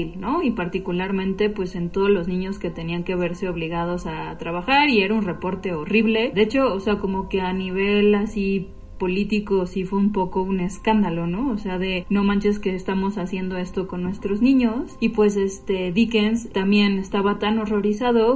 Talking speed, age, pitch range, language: 185 wpm, 20-39, 180-210 Hz, Spanish